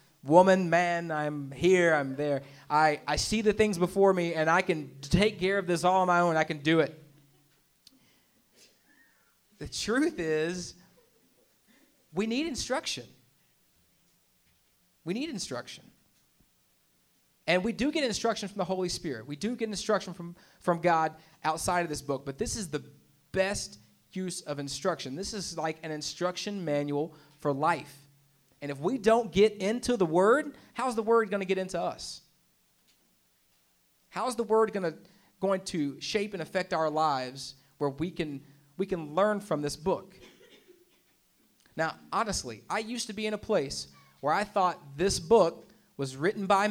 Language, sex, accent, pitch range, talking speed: English, male, American, 145-195 Hz, 160 wpm